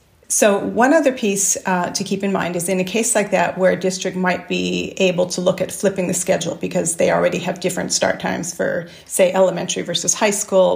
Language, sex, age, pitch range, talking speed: English, female, 40-59, 180-210 Hz, 225 wpm